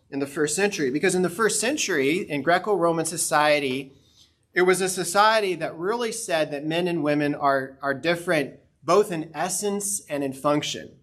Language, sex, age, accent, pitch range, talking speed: English, male, 30-49, American, 135-170 Hz, 175 wpm